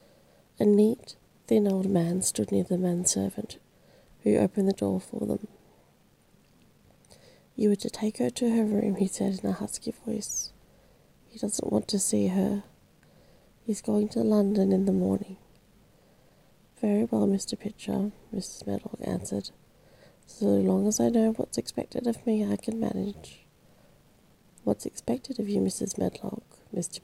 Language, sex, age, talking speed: English, female, 30-49, 150 wpm